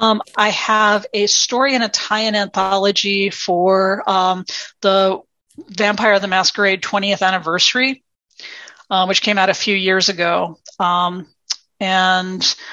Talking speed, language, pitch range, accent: 130 wpm, English, 180-210 Hz, American